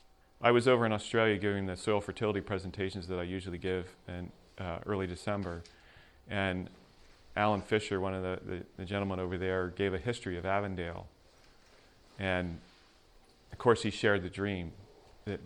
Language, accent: English, American